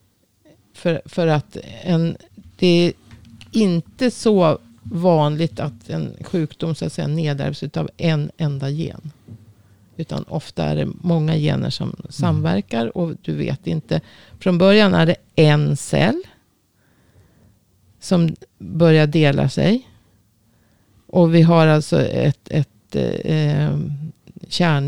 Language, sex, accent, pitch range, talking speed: Swedish, female, native, 140-175 Hz, 120 wpm